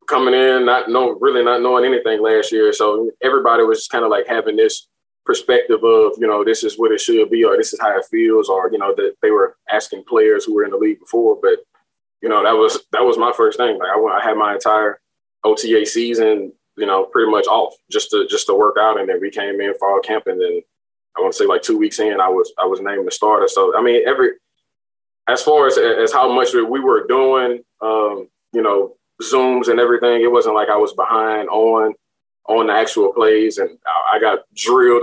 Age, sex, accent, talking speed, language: 20-39, male, American, 235 wpm, English